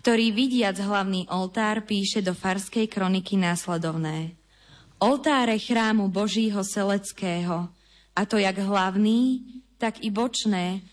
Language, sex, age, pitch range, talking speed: Slovak, female, 20-39, 190-225 Hz, 110 wpm